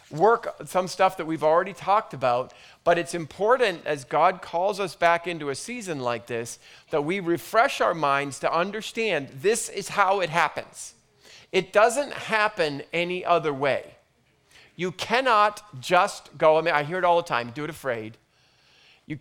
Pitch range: 140-185 Hz